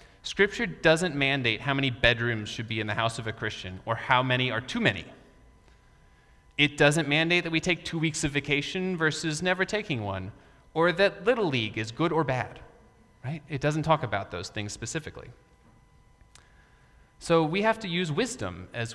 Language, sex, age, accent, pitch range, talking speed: English, male, 30-49, American, 115-165 Hz, 180 wpm